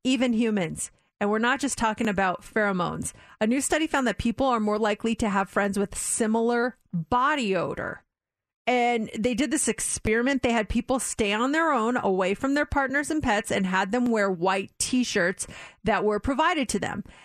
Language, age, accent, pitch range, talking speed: English, 40-59, American, 205-265 Hz, 190 wpm